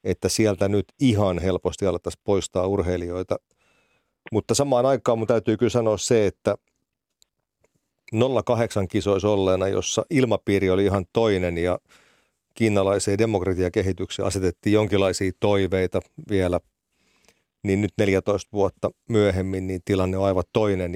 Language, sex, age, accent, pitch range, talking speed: Finnish, male, 40-59, native, 90-105 Hz, 125 wpm